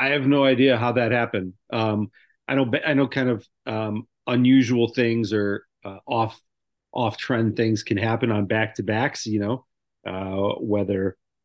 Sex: male